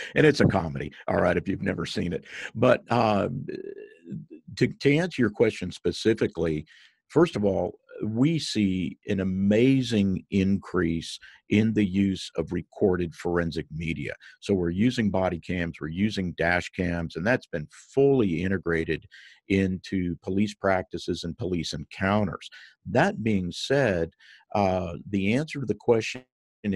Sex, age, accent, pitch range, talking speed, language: male, 50-69, American, 90-110 Hz, 140 wpm, English